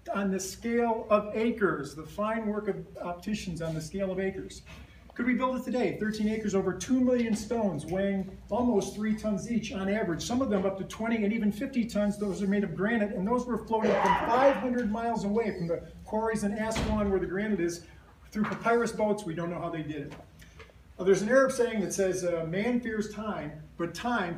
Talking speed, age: 215 wpm, 50-69